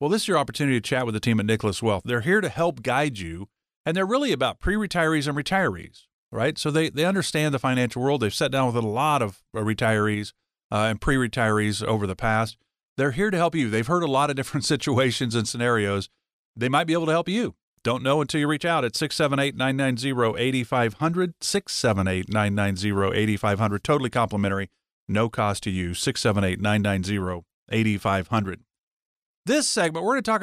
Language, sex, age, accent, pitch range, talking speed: English, male, 40-59, American, 110-150 Hz, 180 wpm